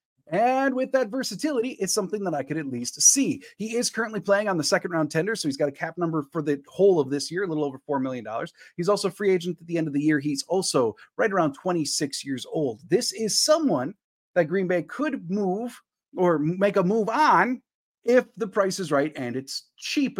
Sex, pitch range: male, 150-235 Hz